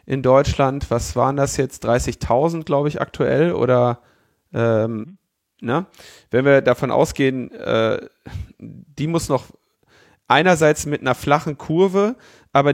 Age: 40-59